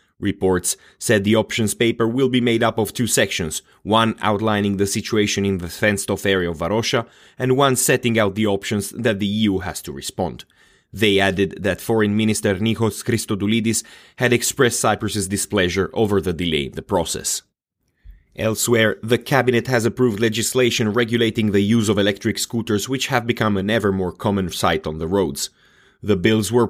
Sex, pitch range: male, 100-120 Hz